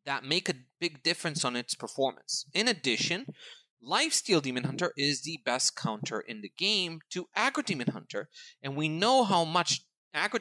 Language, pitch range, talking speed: English, 125-175 Hz, 175 wpm